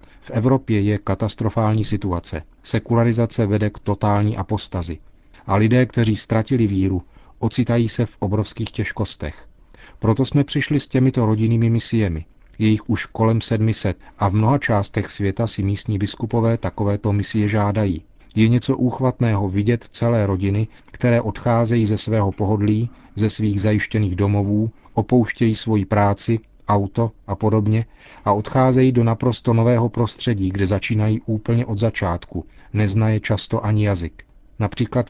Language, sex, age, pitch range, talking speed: Czech, male, 40-59, 100-115 Hz, 135 wpm